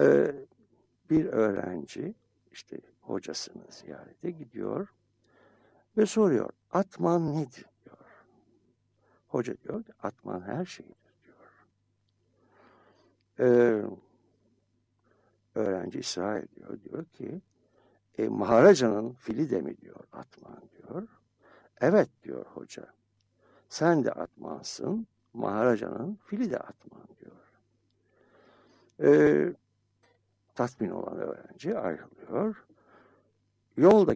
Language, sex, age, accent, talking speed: Turkish, male, 60-79, native, 85 wpm